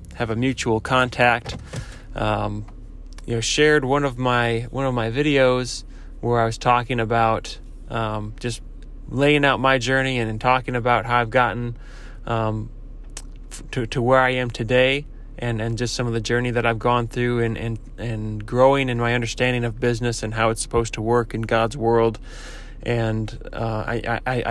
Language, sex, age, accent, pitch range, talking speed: English, male, 20-39, American, 115-130 Hz, 170 wpm